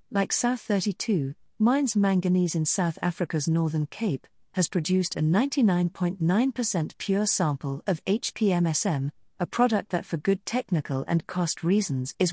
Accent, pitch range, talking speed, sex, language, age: British, 160-210 Hz, 130 wpm, female, English, 50-69